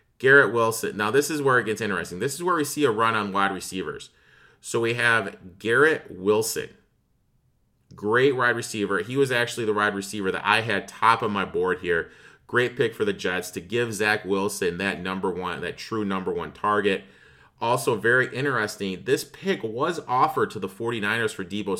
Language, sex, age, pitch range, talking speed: English, male, 30-49, 100-135 Hz, 195 wpm